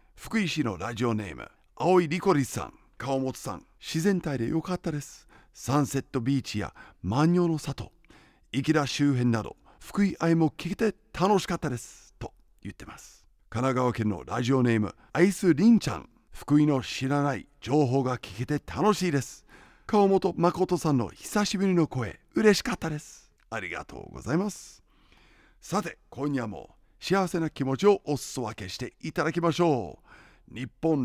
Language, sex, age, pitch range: Japanese, male, 50-69, 125-185 Hz